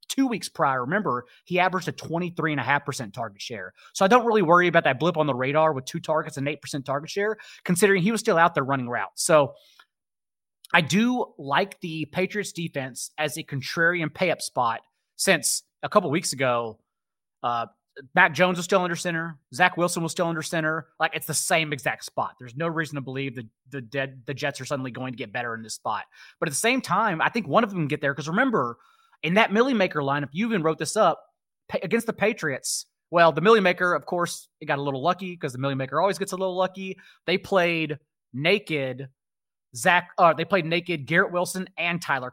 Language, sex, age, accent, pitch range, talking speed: English, male, 30-49, American, 140-185 Hz, 210 wpm